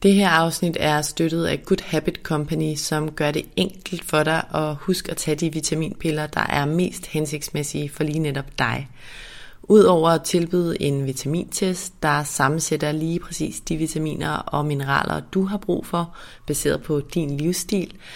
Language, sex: Danish, female